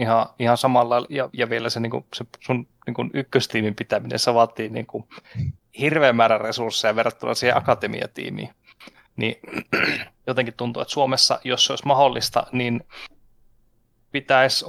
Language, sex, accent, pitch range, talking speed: Finnish, male, native, 115-130 Hz, 145 wpm